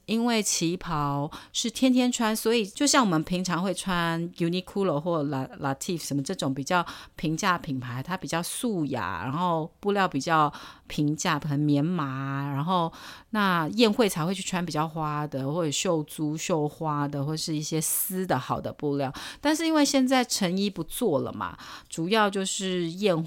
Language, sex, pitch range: Chinese, female, 145-190 Hz